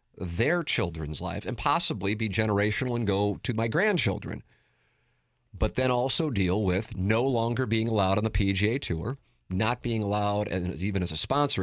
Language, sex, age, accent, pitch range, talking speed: English, male, 40-59, American, 100-130 Hz, 170 wpm